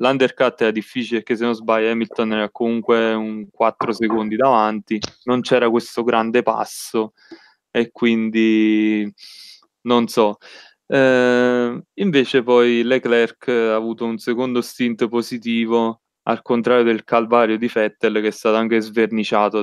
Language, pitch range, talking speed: Italian, 110-125 Hz, 135 wpm